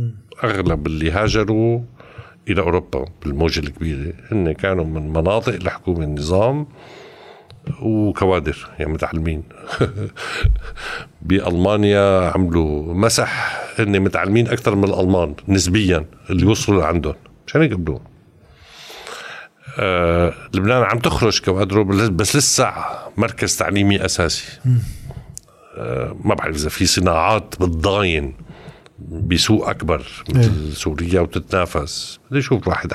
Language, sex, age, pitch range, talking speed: Arabic, male, 60-79, 85-105 Hz, 100 wpm